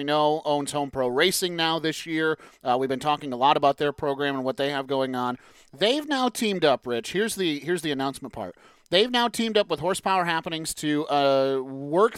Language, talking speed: English, 220 wpm